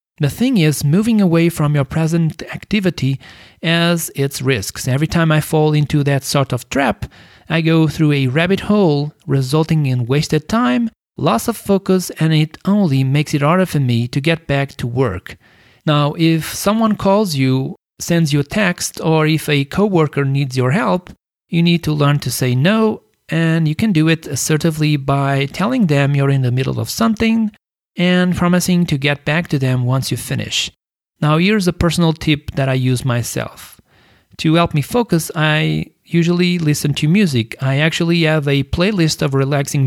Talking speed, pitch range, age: 180 wpm, 135-170 Hz, 40-59